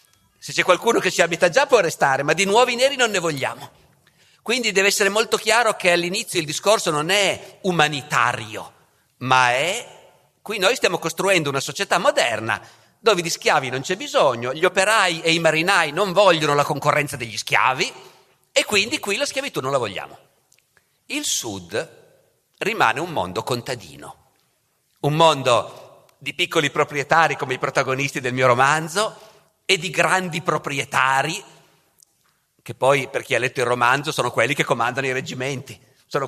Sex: male